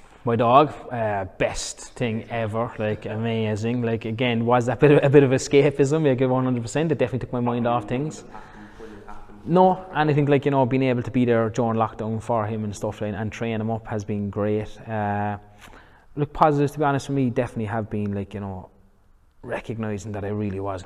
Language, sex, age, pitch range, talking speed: English, male, 20-39, 95-120 Hz, 205 wpm